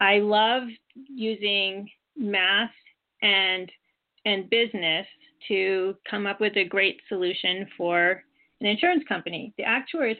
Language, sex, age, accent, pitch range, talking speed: English, female, 30-49, American, 185-250 Hz, 120 wpm